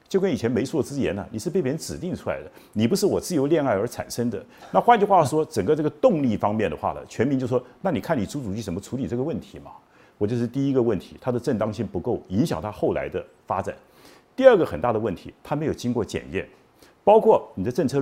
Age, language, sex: 50-69, Chinese, male